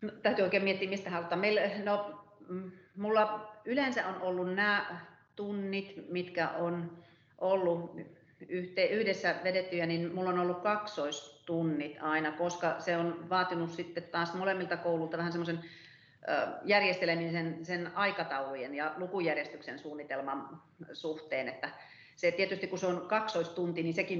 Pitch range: 160-185 Hz